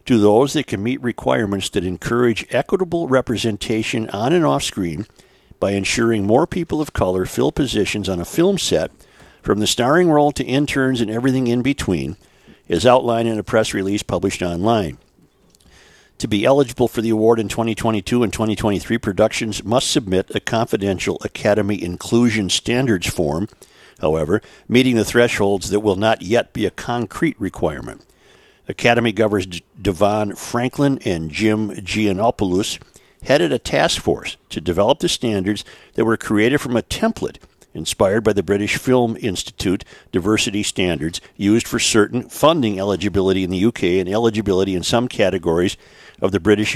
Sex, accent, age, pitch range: male, American, 50-69, 95-120 Hz